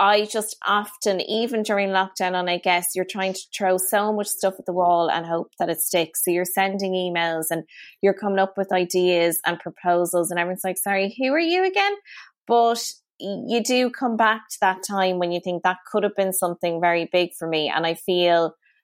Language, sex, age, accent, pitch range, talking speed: English, female, 20-39, Irish, 175-205 Hz, 215 wpm